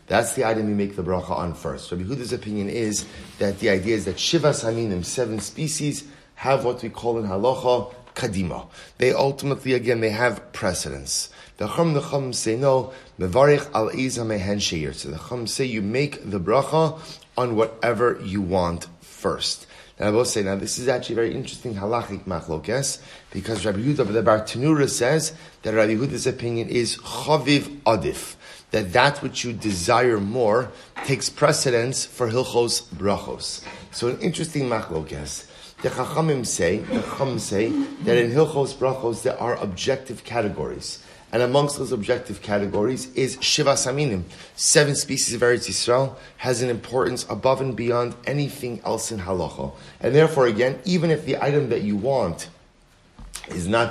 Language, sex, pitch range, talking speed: English, male, 105-140 Hz, 160 wpm